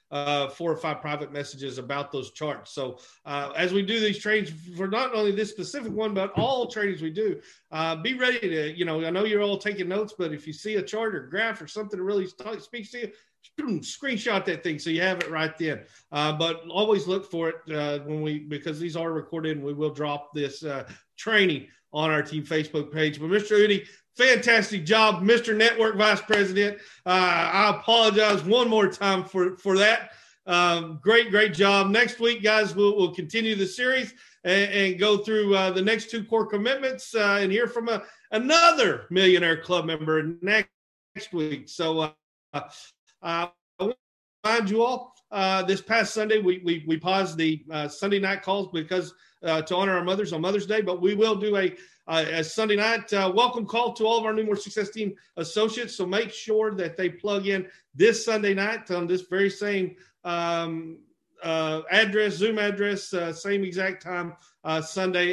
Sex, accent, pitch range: male, American, 165-215 Hz